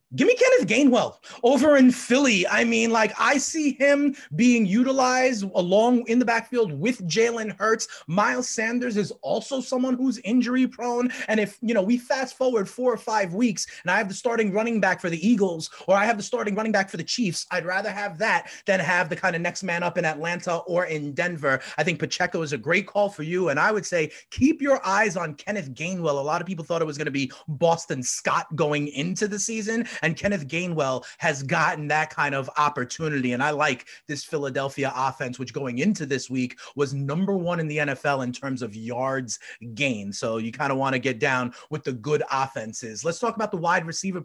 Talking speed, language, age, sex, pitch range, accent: 220 wpm, English, 30-49, male, 150-225 Hz, American